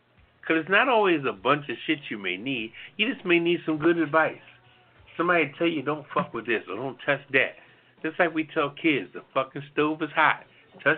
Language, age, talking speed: English, 50-69, 220 wpm